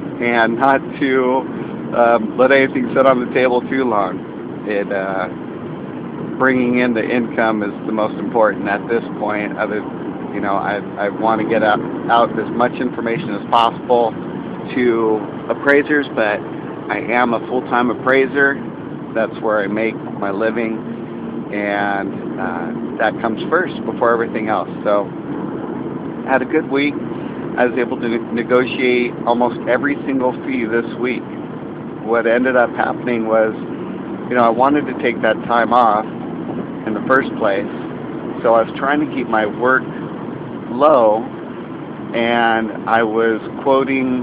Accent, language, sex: American, English, male